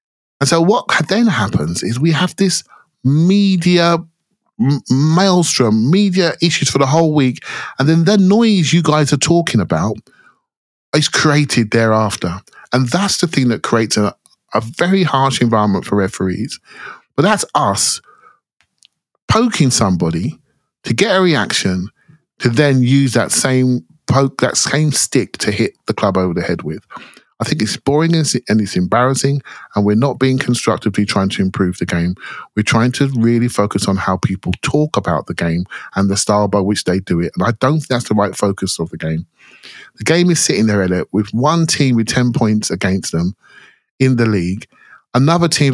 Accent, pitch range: British, 100-155 Hz